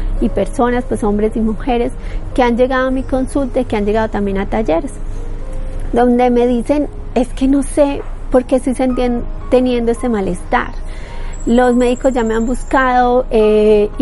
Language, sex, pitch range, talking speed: Spanish, female, 215-260 Hz, 170 wpm